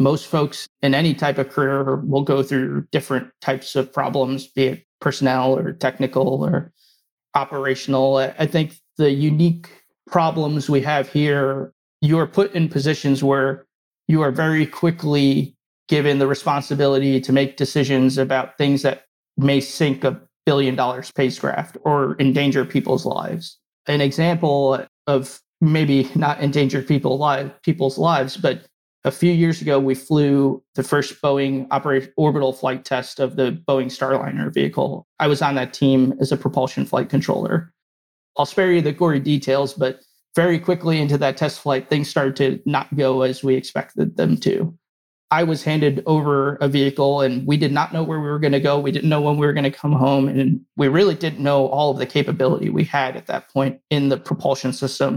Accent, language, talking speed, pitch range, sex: American, English, 175 wpm, 135-150 Hz, male